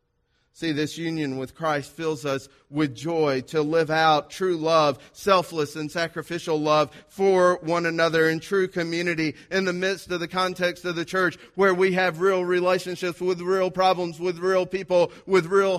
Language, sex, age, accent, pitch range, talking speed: English, male, 40-59, American, 150-180 Hz, 175 wpm